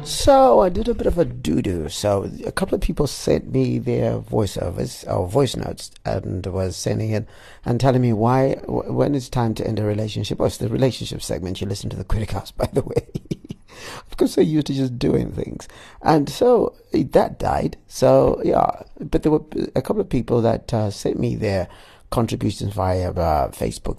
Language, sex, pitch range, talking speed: English, male, 105-130 Hz, 200 wpm